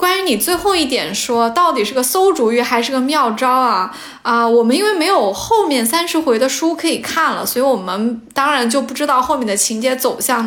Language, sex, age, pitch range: Chinese, female, 20-39, 235-315 Hz